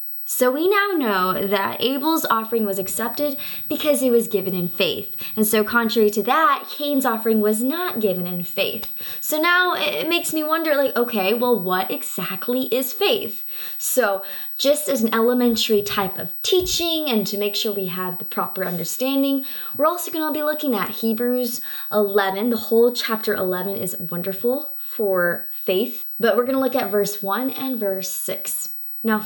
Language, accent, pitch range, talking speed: English, American, 200-265 Hz, 175 wpm